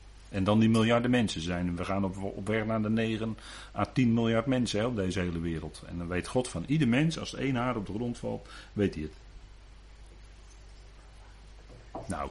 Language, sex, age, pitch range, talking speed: Dutch, male, 40-59, 90-120 Hz, 190 wpm